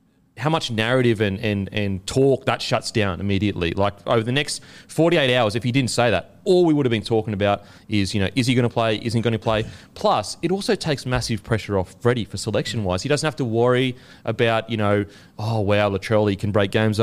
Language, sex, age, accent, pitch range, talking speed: English, male, 30-49, Australian, 100-125 Hz, 235 wpm